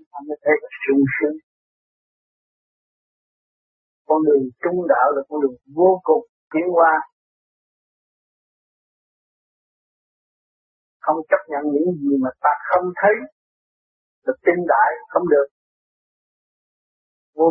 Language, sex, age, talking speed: Vietnamese, male, 50-69, 90 wpm